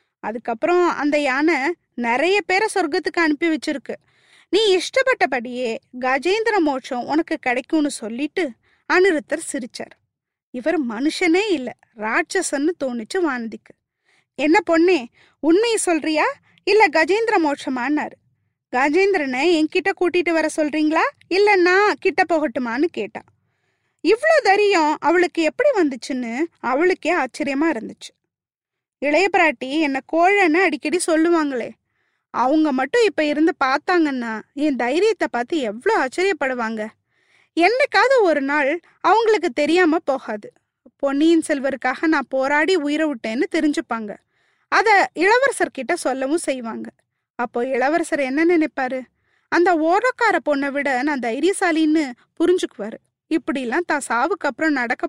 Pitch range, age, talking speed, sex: 275-360 Hz, 20-39, 105 wpm, female